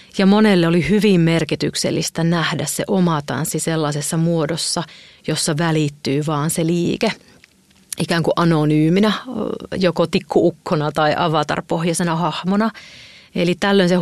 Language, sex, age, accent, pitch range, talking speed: Finnish, female, 30-49, native, 160-190 Hz, 110 wpm